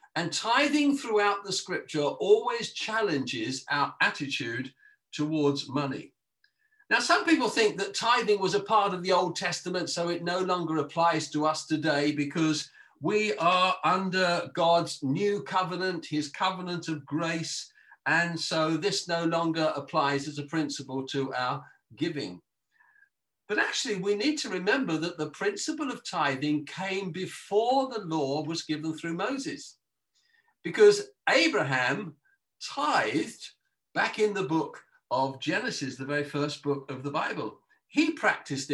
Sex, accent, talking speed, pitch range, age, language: male, British, 145 wpm, 155-210 Hz, 50-69, English